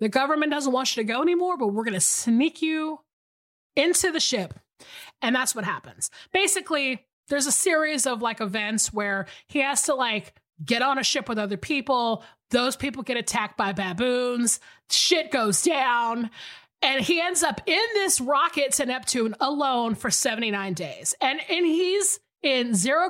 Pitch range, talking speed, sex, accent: 210-295 Hz, 175 wpm, female, American